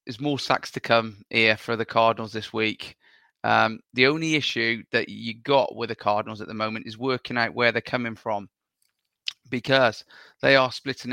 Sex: male